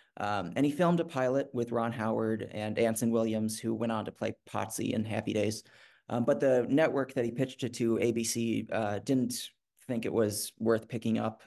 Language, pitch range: English, 110-130 Hz